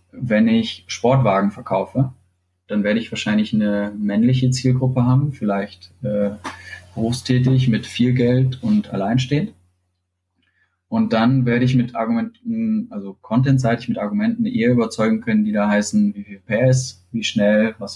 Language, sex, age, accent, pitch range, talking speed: German, male, 20-39, German, 105-130 Hz, 140 wpm